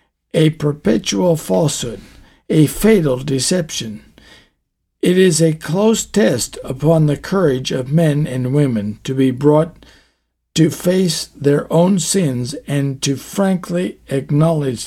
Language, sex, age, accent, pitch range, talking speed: English, male, 60-79, American, 135-170 Hz, 120 wpm